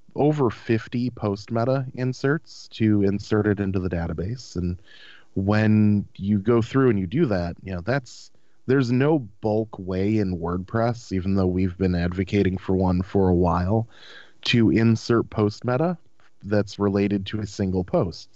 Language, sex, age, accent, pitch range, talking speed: English, male, 30-49, American, 95-115 Hz, 160 wpm